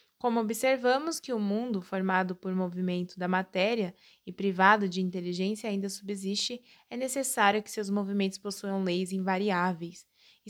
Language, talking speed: Portuguese, 145 wpm